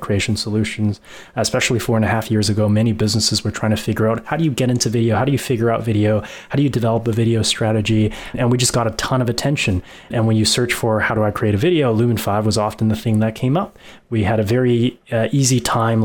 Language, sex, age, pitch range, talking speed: English, male, 20-39, 110-130 Hz, 260 wpm